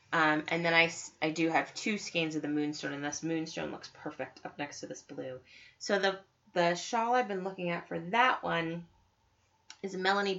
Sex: female